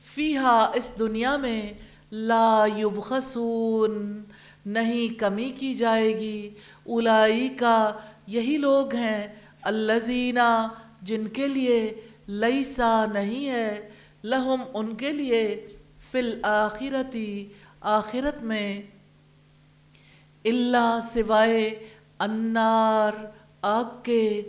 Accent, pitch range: Indian, 215-240 Hz